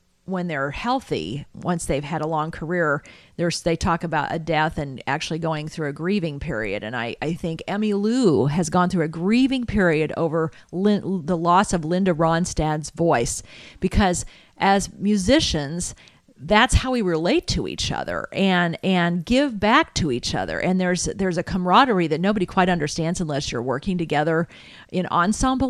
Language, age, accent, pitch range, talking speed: English, 50-69, American, 165-210 Hz, 175 wpm